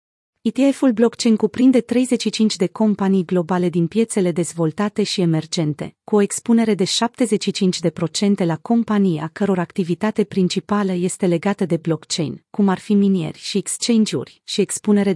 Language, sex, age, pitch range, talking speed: Romanian, female, 30-49, 180-220 Hz, 140 wpm